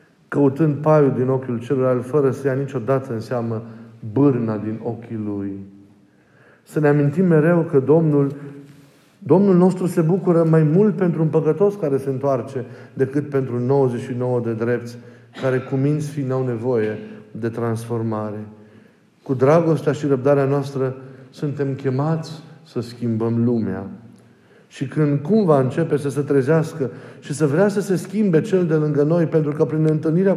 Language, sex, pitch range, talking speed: Romanian, male, 120-165 Hz, 150 wpm